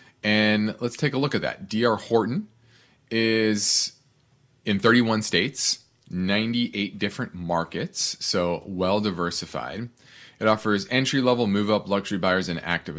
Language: English